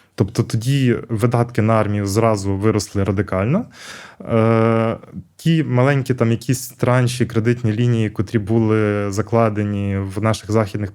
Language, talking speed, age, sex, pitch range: Ukrainian, 115 wpm, 20-39, male, 100-120 Hz